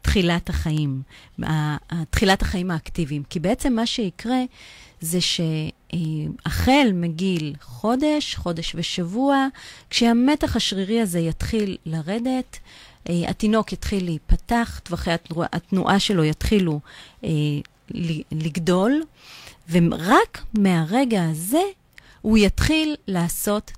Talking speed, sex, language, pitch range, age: 90 wpm, female, Hebrew, 165-235 Hz, 30-49